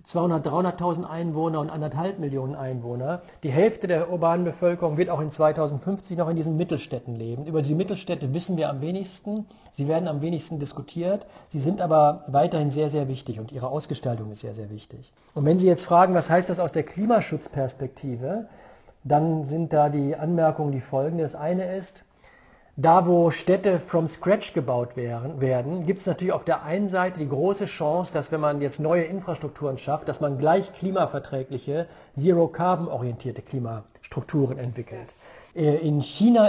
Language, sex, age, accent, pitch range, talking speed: German, male, 50-69, German, 140-175 Hz, 165 wpm